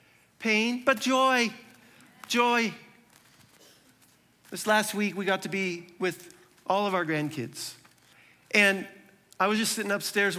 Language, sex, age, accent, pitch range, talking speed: English, male, 40-59, American, 185-245 Hz, 125 wpm